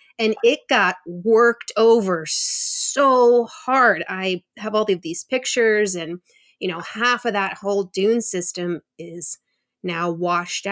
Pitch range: 180-215 Hz